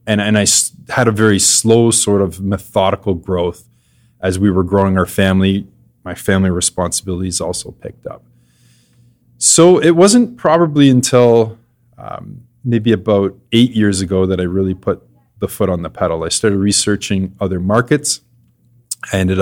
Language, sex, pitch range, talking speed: English, male, 90-115 Hz, 155 wpm